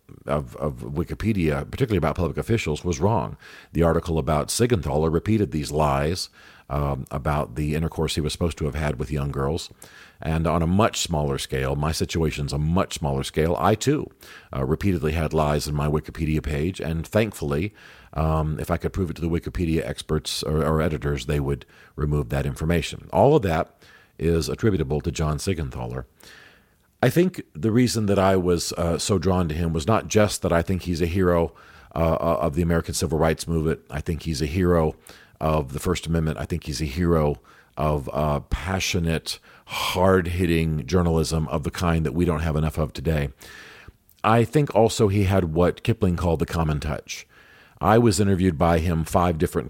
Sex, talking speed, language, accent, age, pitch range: male, 185 wpm, English, American, 50-69, 75-90 Hz